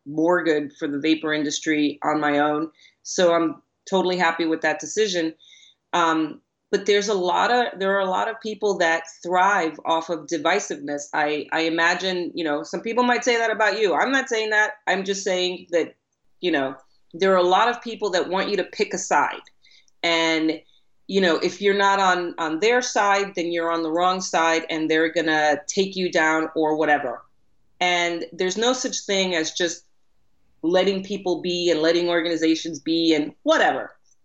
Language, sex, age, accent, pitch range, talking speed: English, female, 30-49, American, 155-190 Hz, 190 wpm